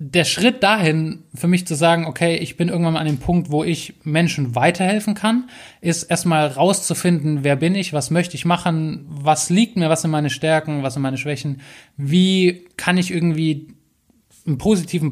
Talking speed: 185 wpm